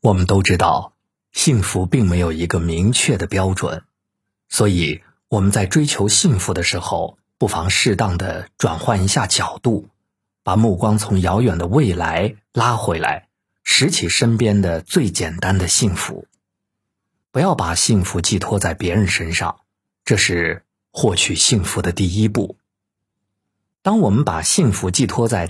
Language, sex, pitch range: Chinese, male, 90-105 Hz